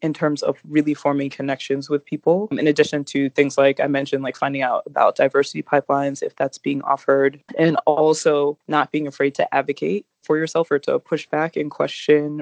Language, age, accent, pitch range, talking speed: English, 20-39, American, 140-155 Hz, 195 wpm